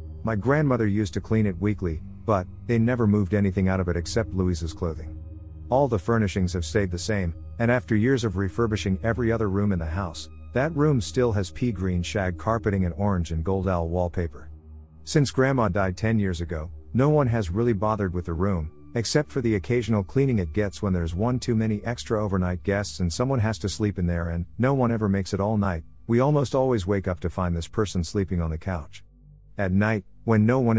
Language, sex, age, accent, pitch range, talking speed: English, male, 50-69, American, 85-115 Hz, 215 wpm